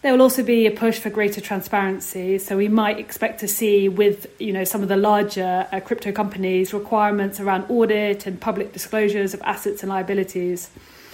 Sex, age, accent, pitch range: female, 30-49, British, 190-215 Hz